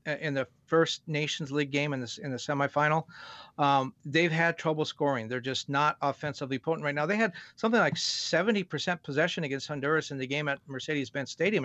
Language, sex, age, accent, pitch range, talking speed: English, male, 40-59, American, 140-170 Hz, 185 wpm